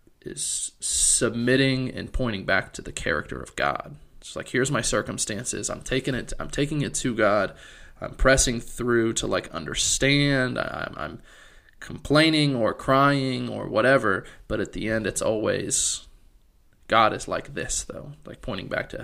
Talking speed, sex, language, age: 160 wpm, male, English, 20-39